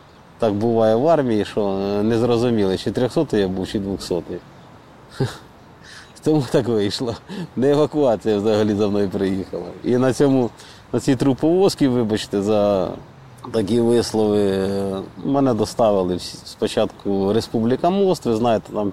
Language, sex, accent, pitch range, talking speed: Ukrainian, male, native, 100-125 Hz, 130 wpm